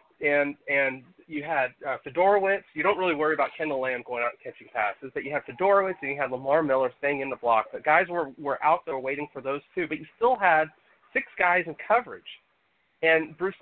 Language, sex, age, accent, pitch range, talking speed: English, male, 30-49, American, 140-200 Hz, 225 wpm